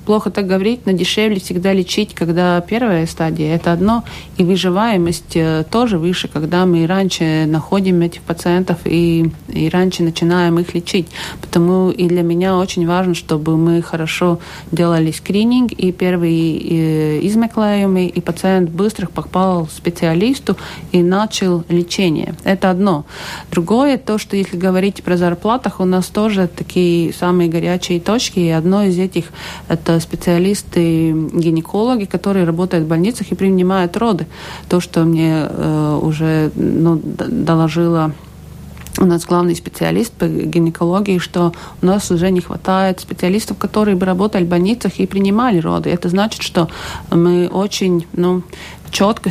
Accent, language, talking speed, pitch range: native, Russian, 140 wpm, 170-195 Hz